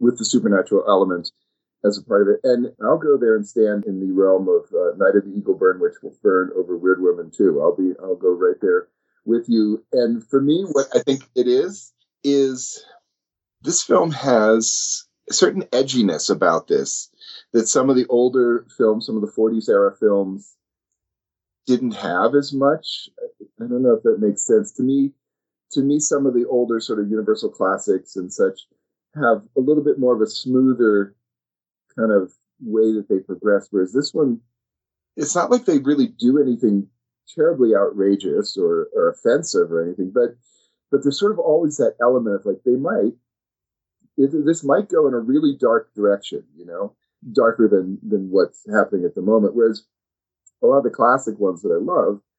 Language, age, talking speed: English, 40-59, 190 wpm